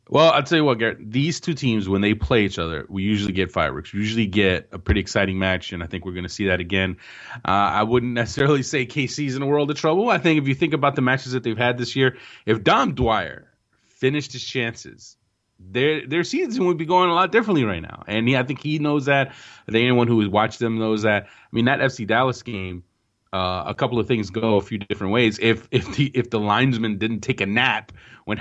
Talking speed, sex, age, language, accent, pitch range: 250 wpm, male, 30-49, English, American, 105-130 Hz